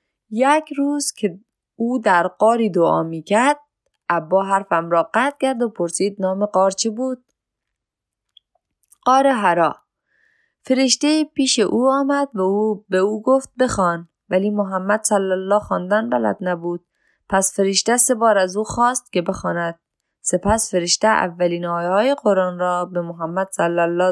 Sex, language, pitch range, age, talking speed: female, Persian, 175-235 Hz, 20-39, 145 wpm